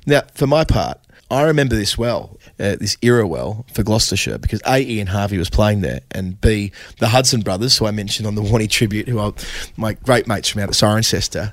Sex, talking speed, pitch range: male, 220 wpm, 95-110 Hz